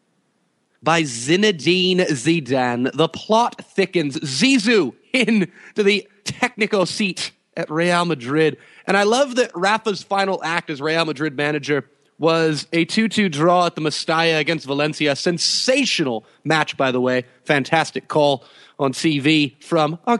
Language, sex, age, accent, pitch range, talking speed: English, male, 30-49, American, 150-220 Hz, 135 wpm